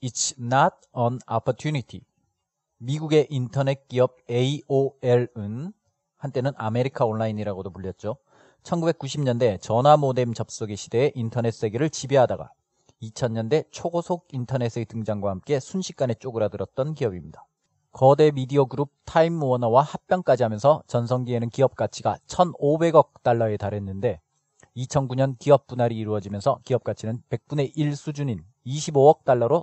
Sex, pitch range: male, 115-145 Hz